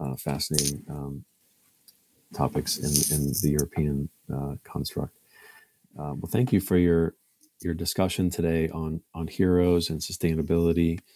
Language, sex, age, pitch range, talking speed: English, male, 40-59, 75-85 Hz, 130 wpm